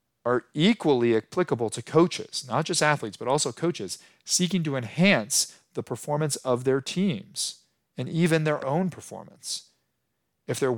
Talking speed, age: 145 wpm, 40-59